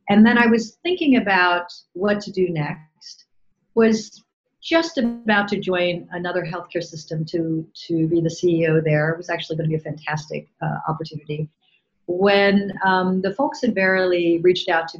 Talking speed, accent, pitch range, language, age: 170 wpm, American, 165-205 Hz, English, 50-69